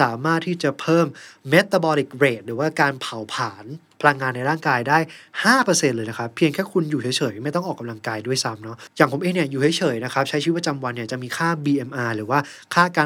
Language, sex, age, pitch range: Thai, male, 20-39, 125-160 Hz